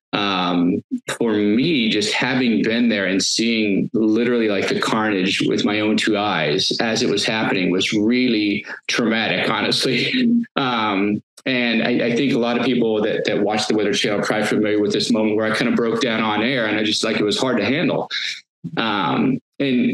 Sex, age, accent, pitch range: male, 30-49, American, 110-135 Hz